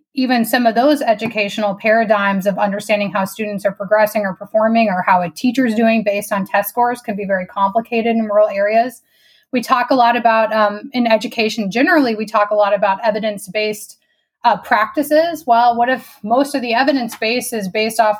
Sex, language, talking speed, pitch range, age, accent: female, English, 190 wpm, 210-250 Hz, 20-39, American